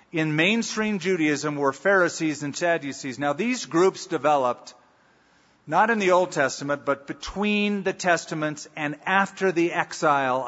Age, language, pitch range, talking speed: 50-69, English, 145-185 Hz, 135 wpm